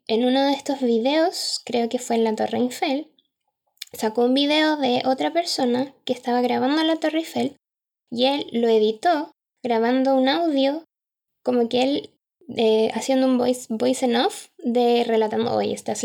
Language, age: Spanish, 10-29